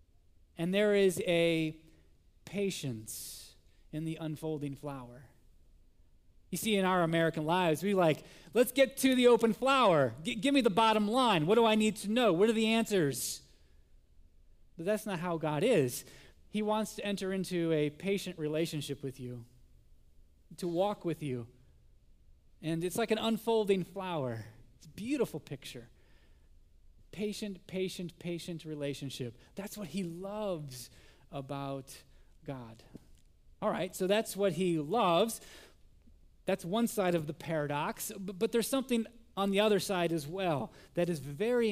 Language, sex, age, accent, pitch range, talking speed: English, male, 30-49, American, 135-215 Hz, 150 wpm